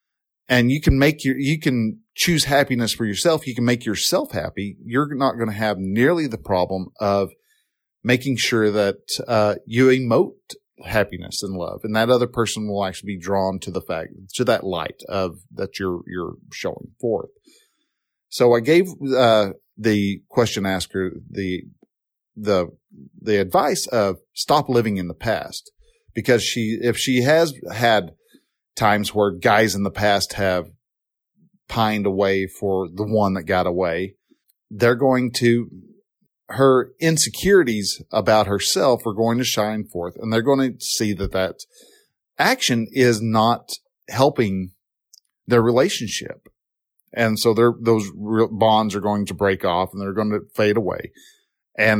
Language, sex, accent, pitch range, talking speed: English, male, American, 100-125 Hz, 155 wpm